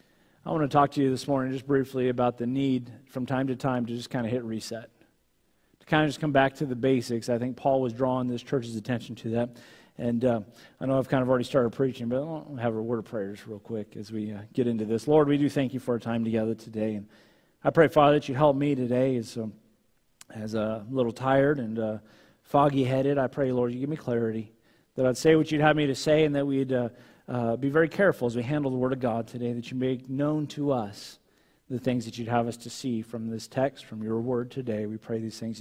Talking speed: 260 wpm